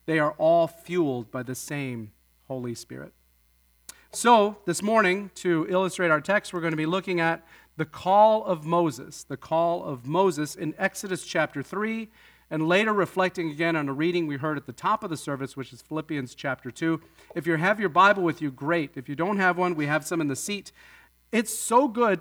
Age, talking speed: 40-59, 205 wpm